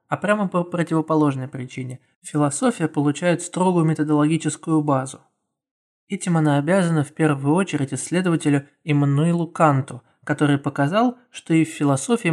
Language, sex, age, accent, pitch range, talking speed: Russian, male, 20-39, native, 145-170 Hz, 120 wpm